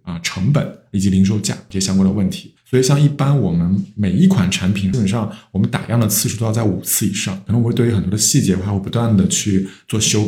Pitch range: 95-125 Hz